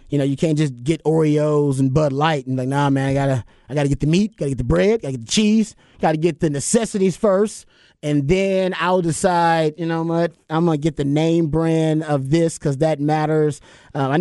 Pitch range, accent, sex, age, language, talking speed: 140-165 Hz, American, male, 30-49, English, 230 wpm